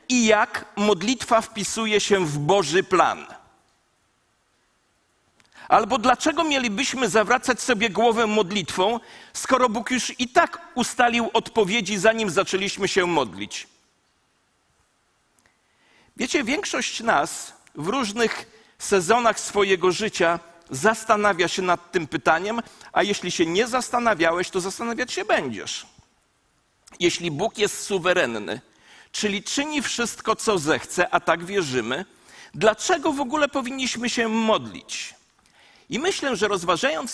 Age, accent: 50-69, native